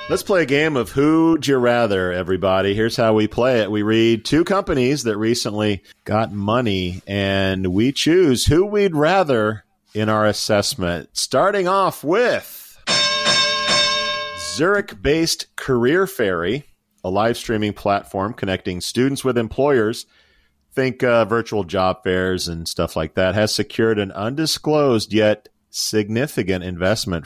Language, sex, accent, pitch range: English, male, American, 100-135 Hz